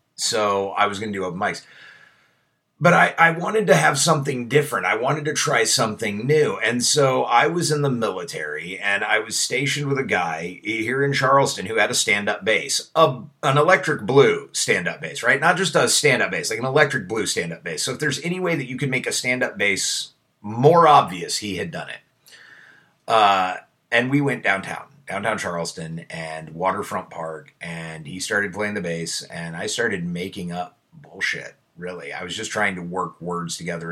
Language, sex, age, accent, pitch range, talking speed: English, male, 30-49, American, 85-140 Hz, 195 wpm